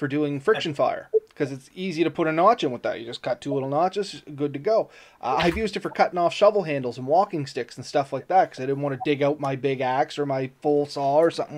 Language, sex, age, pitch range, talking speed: English, male, 30-49, 145-200 Hz, 280 wpm